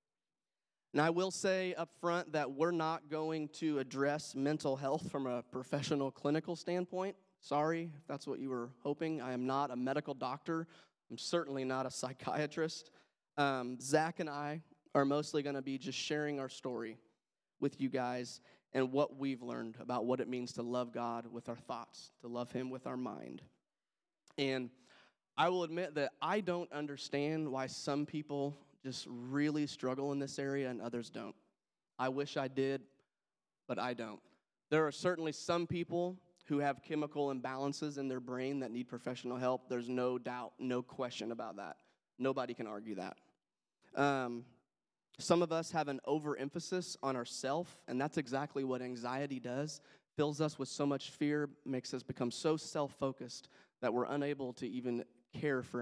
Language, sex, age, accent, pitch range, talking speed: English, male, 30-49, American, 125-150 Hz, 170 wpm